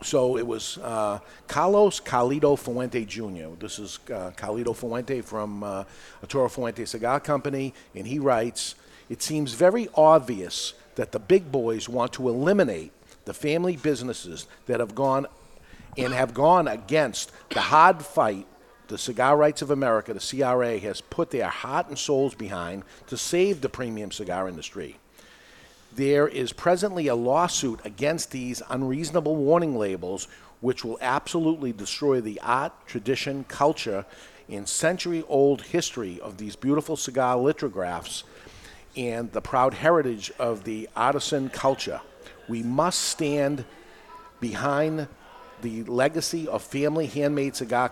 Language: English